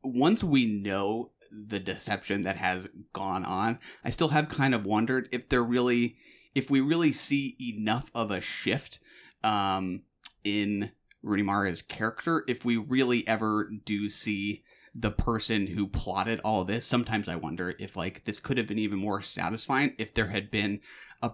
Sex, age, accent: male, 30-49, American